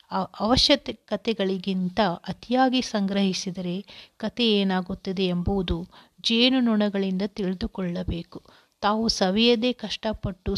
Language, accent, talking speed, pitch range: Kannada, native, 75 wpm, 190-225 Hz